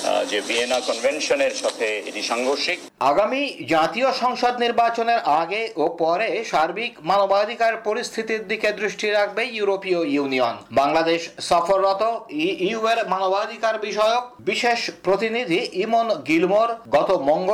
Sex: male